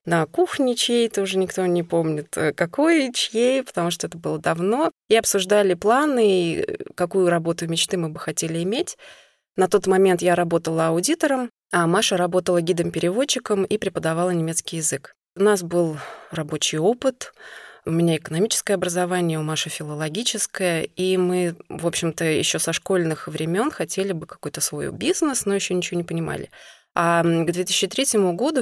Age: 20-39